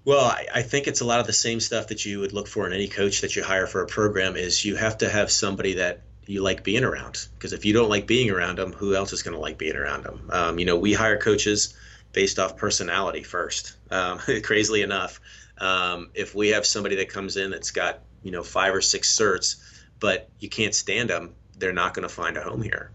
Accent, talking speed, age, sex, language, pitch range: American, 250 wpm, 30-49, male, English, 95-115 Hz